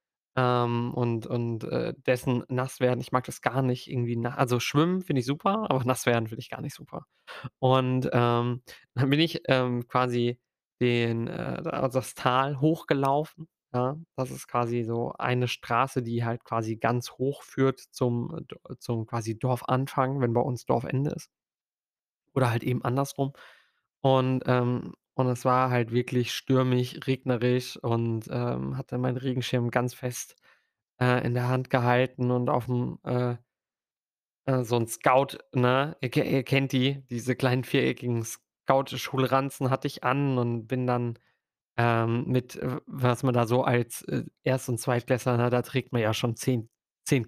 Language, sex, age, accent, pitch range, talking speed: German, male, 20-39, German, 120-130 Hz, 160 wpm